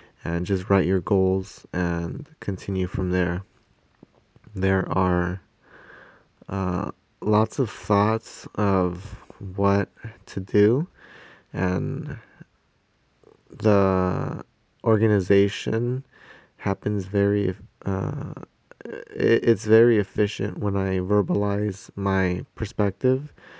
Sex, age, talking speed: male, 20-39, 85 wpm